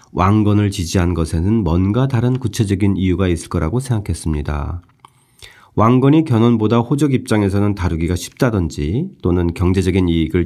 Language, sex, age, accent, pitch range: Korean, male, 40-59, native, 90-125 Hz